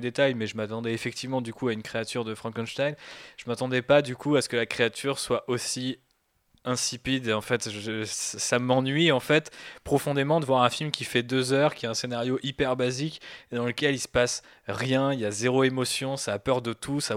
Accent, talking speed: French, 225 wpm